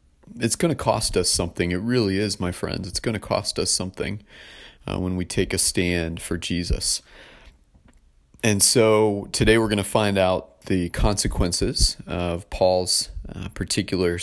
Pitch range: 85-100 Hz